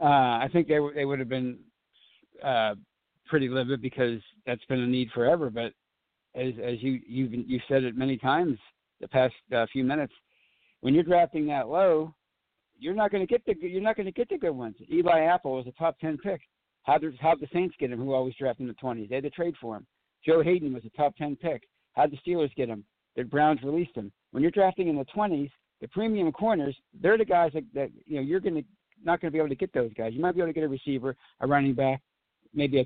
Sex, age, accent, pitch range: male, 60-79, American, 130-175 Hz